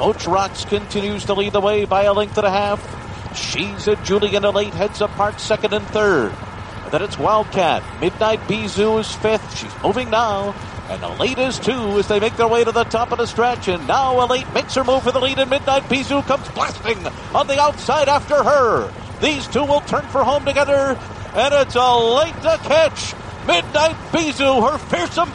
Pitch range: 215-345 Hz